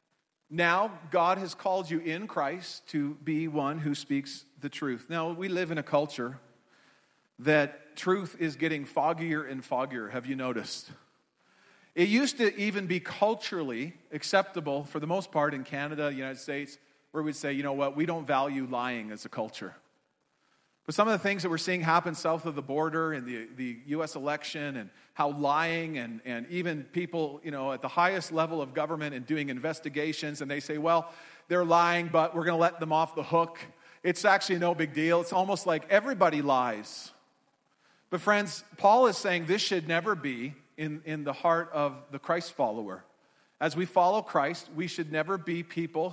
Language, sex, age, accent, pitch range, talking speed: English, male, 40-59, American, 145-175 Hz, 190 wpm